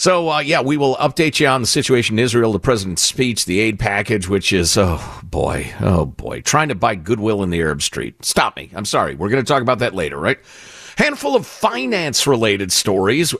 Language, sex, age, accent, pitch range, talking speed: English, male, 50-69, American, 100-150 Hz, 215 wpm